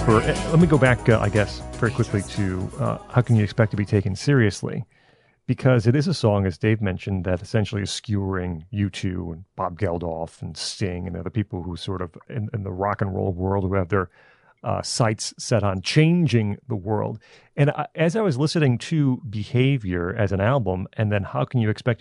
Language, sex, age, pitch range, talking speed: English, male, 40-59, 100-135 Hz, 215 wpm